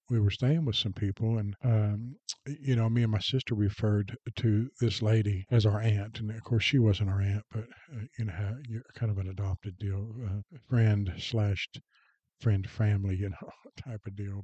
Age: 50-69